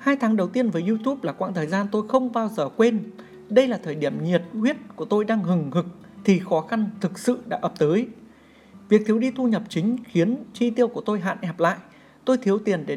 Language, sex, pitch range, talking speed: Vietnamese, male, 170-230 Hz, 240 wpm